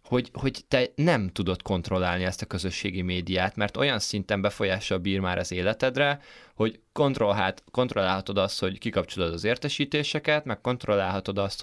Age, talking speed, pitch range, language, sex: 20-39, 155 wpm, 95-130 Hz, Hungarian, male